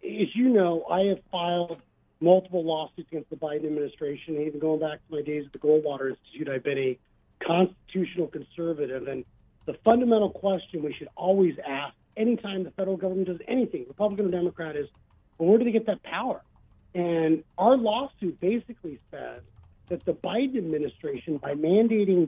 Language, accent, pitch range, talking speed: English, American, 155-210 Hz, 170 wpm